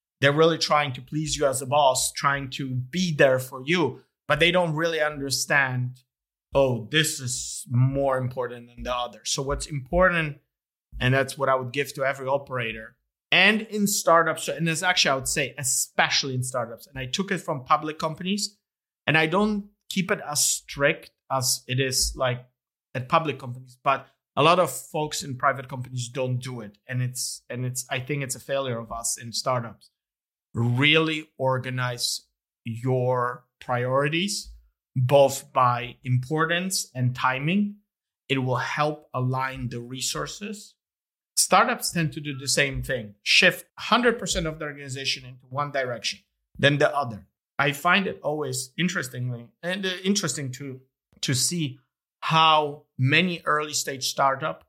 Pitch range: 125-160 Hz